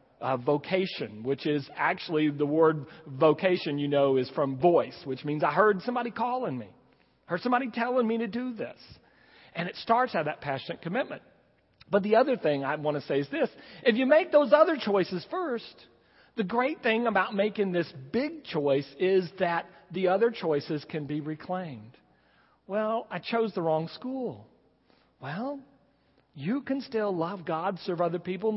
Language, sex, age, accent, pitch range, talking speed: English, male, 50-69, American, 145-225 Hz, 175 wpm